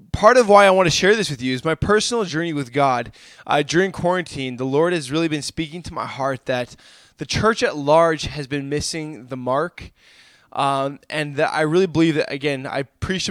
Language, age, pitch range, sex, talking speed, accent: English, 20-39, 135-170 Hz, male, 215 wpm, American